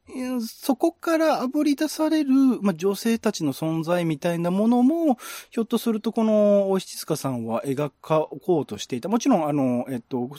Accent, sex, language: native, male, Japanese